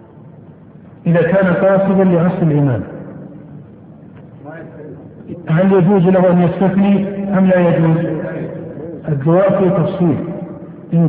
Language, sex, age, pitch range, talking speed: Arabic, male, 50-69, 170-190 Hz, 85 wpm